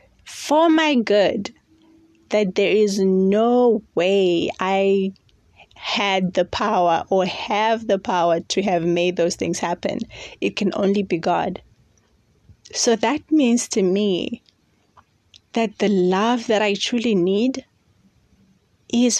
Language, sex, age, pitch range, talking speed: English, female, 20-39, 185-220 Hz, 125 wpm